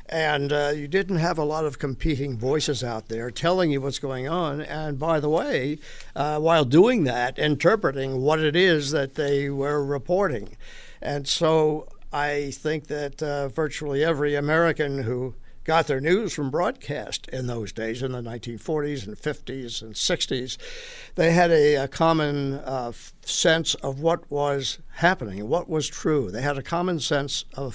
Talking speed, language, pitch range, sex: 170 wpm, English, 130-160 Hz, male